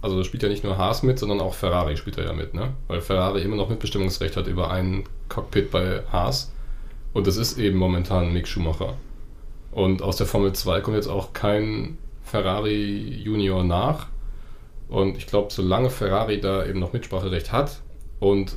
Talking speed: 185 wpm